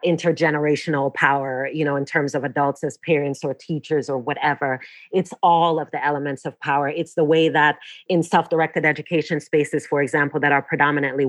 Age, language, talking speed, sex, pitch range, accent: 30-49, English, 180 wpm, female, 150-175 Hz, American